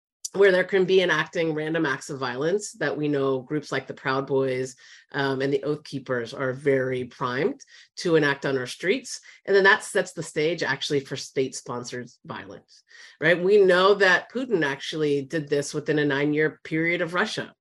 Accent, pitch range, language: American, 145-230 Hz, English